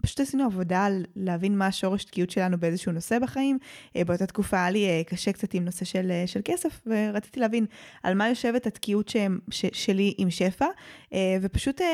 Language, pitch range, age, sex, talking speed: Hebrew, 185-220 Hz, 20-39, female, 165 wpm